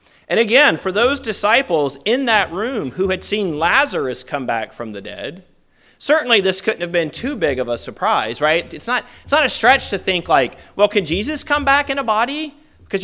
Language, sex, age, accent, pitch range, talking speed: English, male, 30-49, American, 125-195 Hz, 205 wpm